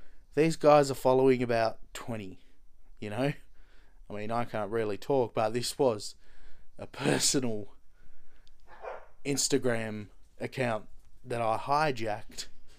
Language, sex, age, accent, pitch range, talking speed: English, male, 20-39, Australian, 105-140 Hz, 115 wpm